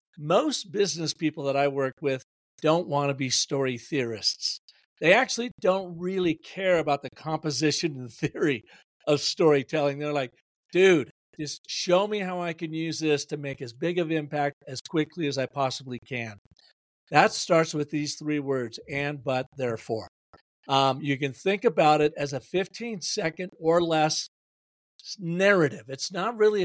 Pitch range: 140-170 Hz